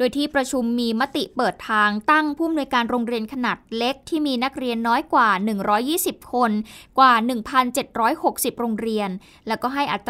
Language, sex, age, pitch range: Thai, female, 20-39, 220-280 Hz